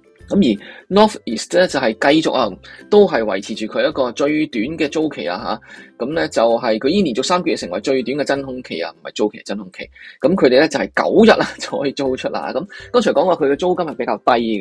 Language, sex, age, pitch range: Chinese, male, 20-39, 110-165 Hz